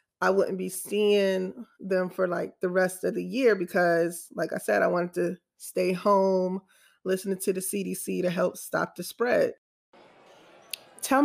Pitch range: 190-225 Hz